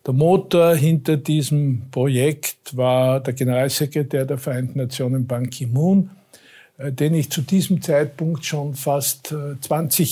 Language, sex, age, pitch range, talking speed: German, male, 60-79, 130-160 Hz, 125 wpm